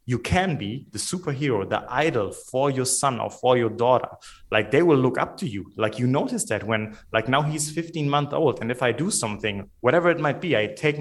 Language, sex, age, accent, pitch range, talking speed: English, male, 30-49, German, 115-145 Hz, 235 wpm